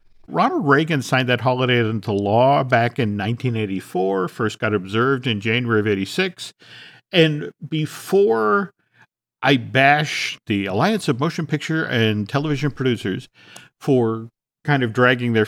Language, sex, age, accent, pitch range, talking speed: English, male, 50-69, American, 115-155 Hz, 130 wpm